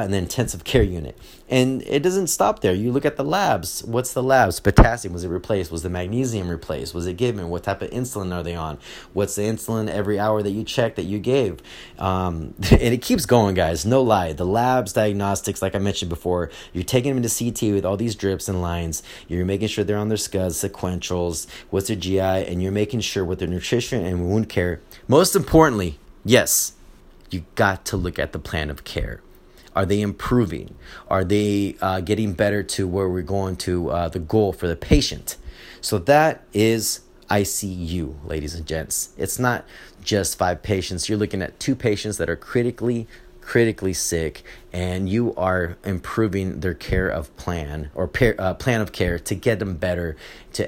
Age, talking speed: 30-49, 195 wpm